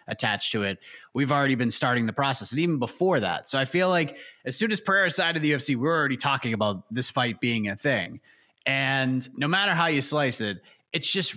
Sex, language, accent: male, English, American